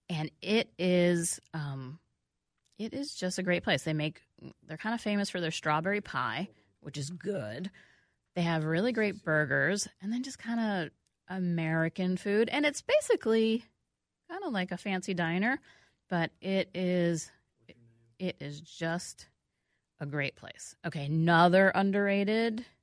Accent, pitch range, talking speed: American, 150-200 Hz, 145 wpm